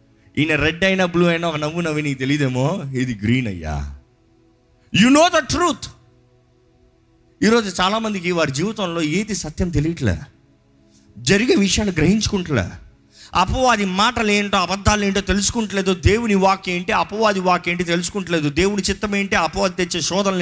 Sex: male